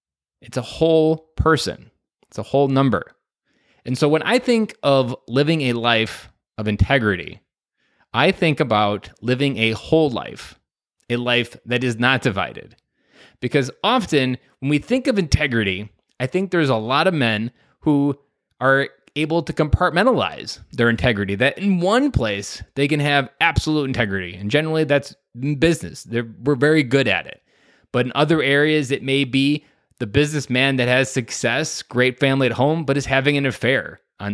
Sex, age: male, 20-39